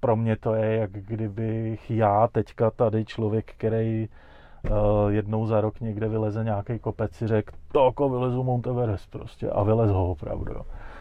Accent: native